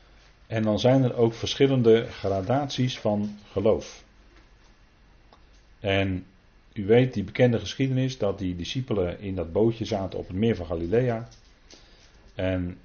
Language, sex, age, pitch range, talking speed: Dutch, male, 40-59, 90-115 Hz, 130 wpm